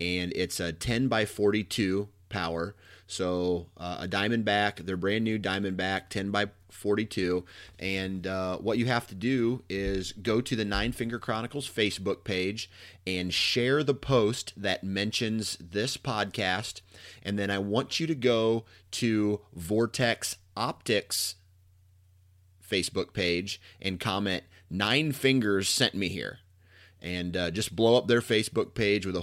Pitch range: 90-110 Hz